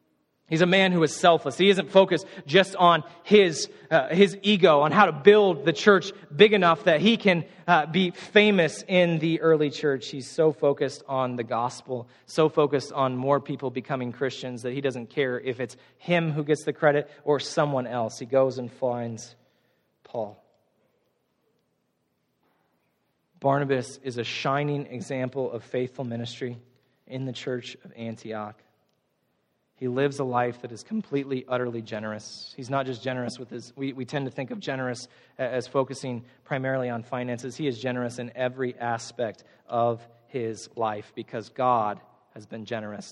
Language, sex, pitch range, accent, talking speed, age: English, male, 125-155 Hz, American, 165 wpm, 30-49